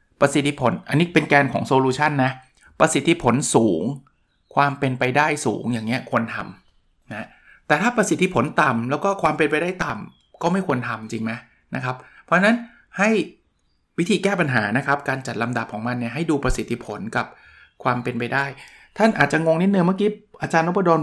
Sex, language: male, Thai